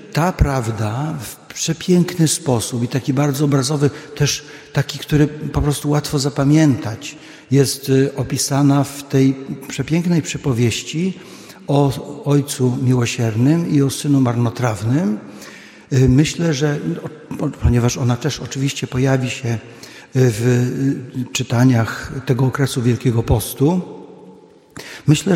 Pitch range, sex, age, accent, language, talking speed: 125-145 Hz, male, 50-69, native, Polish, 105 wpm